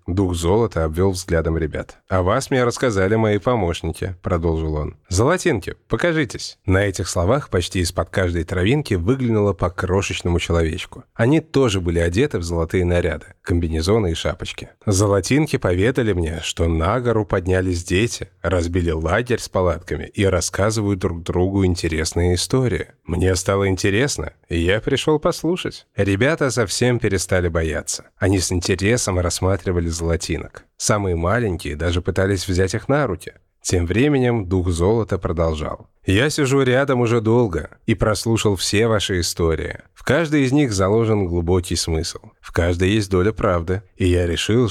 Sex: male